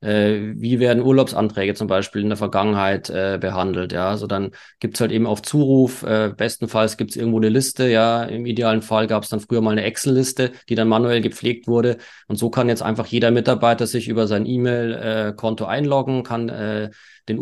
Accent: German